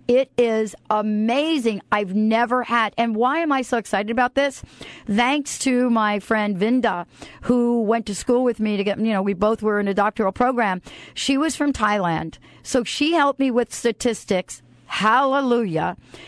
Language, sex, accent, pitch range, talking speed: English, female, American, 200-250 Hz, 175 wpm